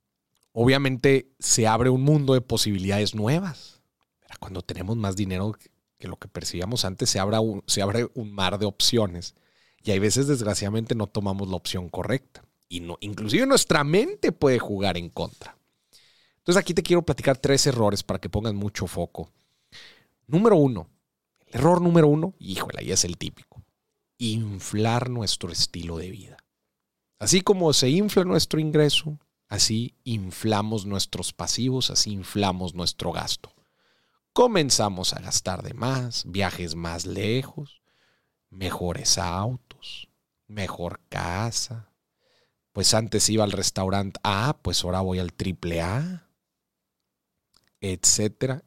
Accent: Mexican